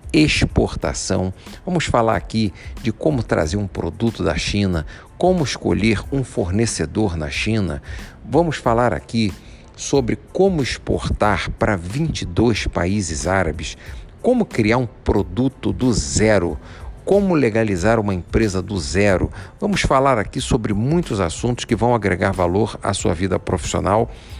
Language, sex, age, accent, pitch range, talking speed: Portuguese, male, 50-69, Brazilian, 90-120 Hz, 130 wpm